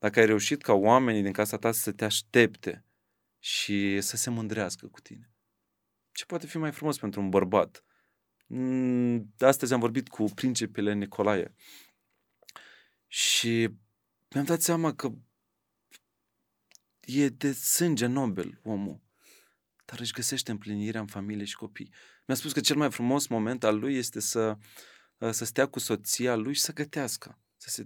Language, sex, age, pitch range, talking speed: Romanian, male, 30-49, 105-130 Hz, 150 wpm